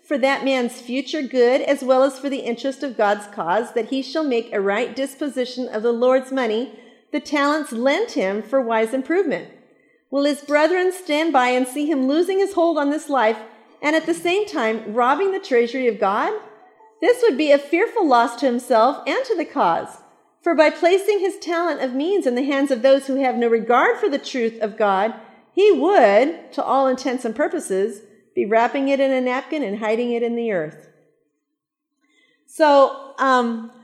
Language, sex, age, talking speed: English, female, 50-69, 195 wpm